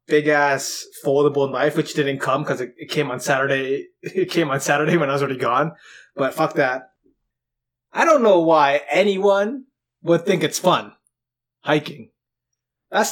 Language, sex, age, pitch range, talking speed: English, male, 20-39, 135-185 Hz, 165 wpm